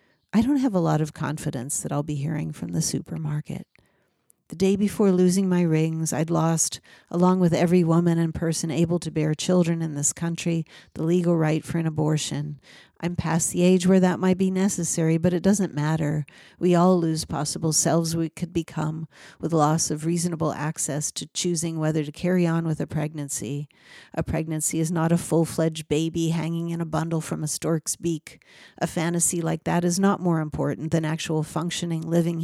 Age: 50-69